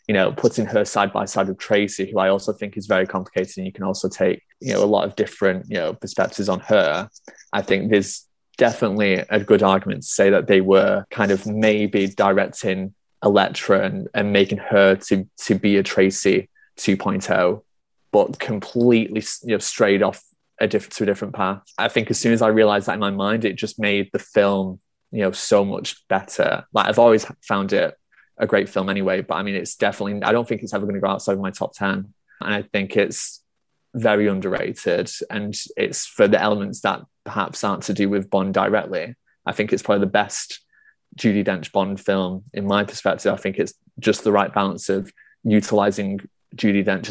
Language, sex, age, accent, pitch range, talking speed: English, male, 20-39, British, 95-105 Hz, 205 wpm